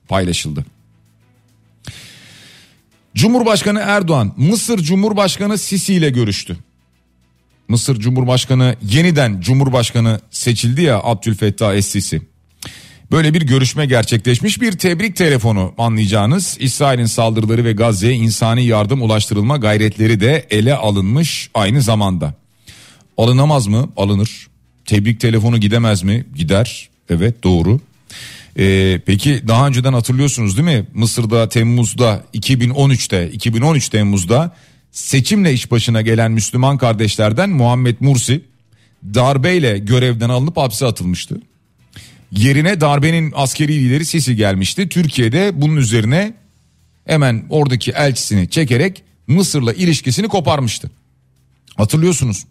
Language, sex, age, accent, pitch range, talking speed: Turkish, male, 40-59, native, 110-150 Hz, 100 wpm